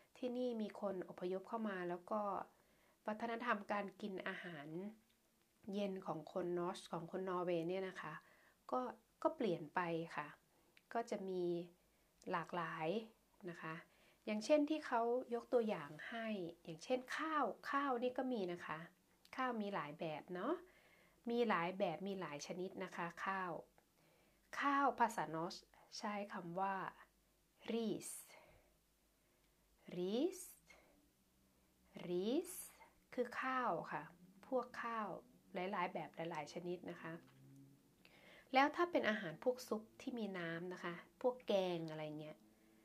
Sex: female